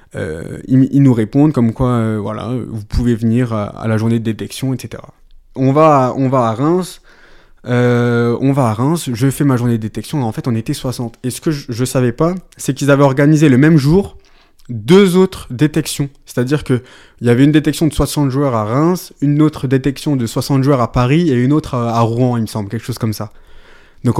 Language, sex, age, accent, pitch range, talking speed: French, male, 20-39, French, 115-140 Hz, 230 wpm